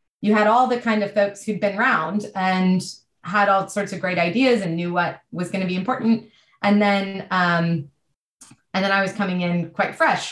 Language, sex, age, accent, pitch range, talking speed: English, female, 20-39, American, 175-215 Hz, 210 wpm